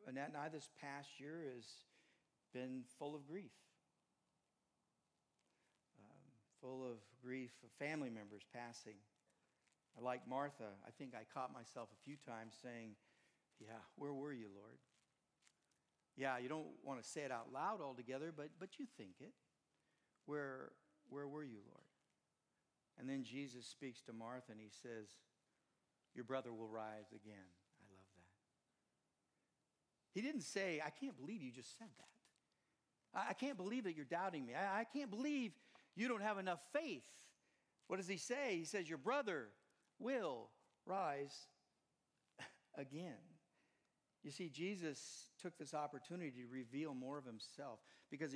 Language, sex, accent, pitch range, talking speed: English, male, American, 120-160 Hz, 145 wpm